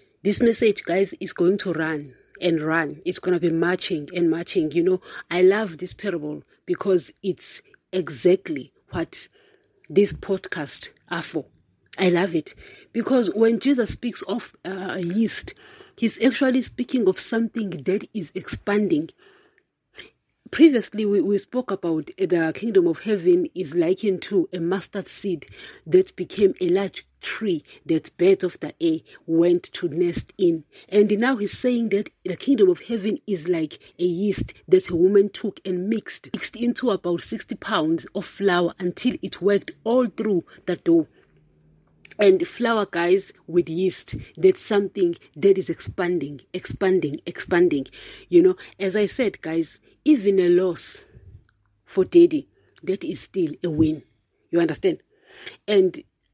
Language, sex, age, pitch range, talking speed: English, female, 40-59, 175-250 Hz, 150 wpm